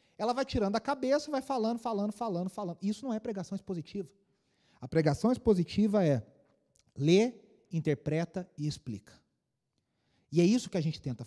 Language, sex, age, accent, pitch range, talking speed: Portuguese, male, 30-49, Brazilian, 150-210 Hz, 165 wpm